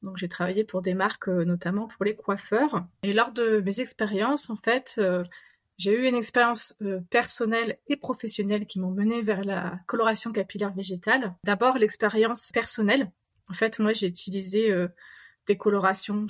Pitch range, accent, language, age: 190-225 Hz, French, French, 30-49